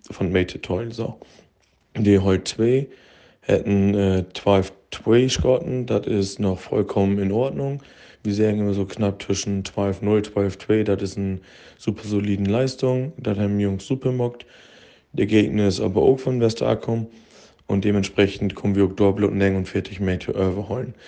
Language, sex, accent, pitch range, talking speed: German, male, German, 100-125 Hz, 160 wpm